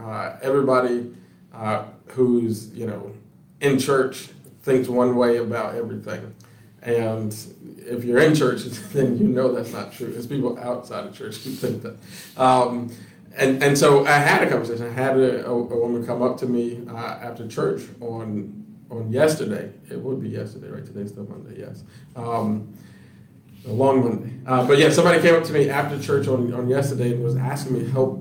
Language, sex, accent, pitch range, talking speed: English, male, American, 115-135 Hz, 185 wpm